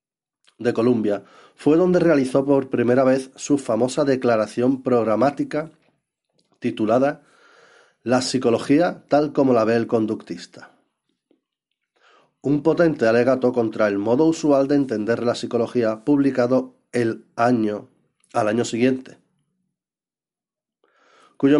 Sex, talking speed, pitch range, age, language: male, 110 wpm, 120-145 Hz, 40-59, Spanish